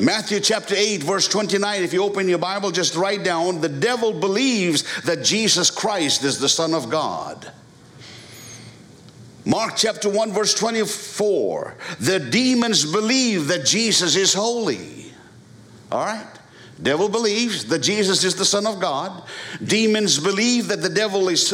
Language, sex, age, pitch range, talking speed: English, male, 60-79, 150-210 Hz, 150 wpm